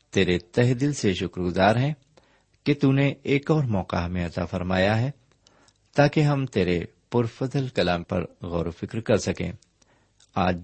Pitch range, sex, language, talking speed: 90-130 Hz, male, Urdu, 160 wpm